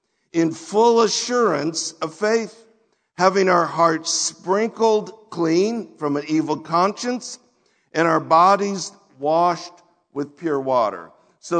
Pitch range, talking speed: 165-215 Hz, 115 wpm